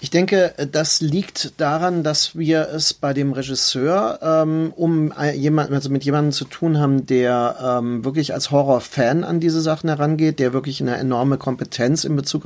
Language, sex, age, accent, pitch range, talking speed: German, male, 40-59, German, 140-160 Hz, 170 wpm